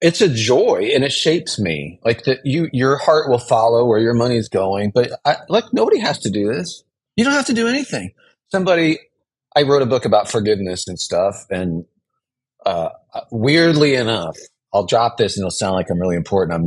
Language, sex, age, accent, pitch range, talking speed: English, male, 30-49, American, 110-155 Hz, 200 wpm